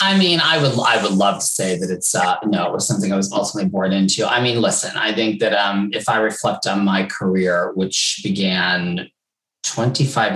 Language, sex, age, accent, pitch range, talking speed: English, male, 30-49, American, 95-110 Hz, 215 wpm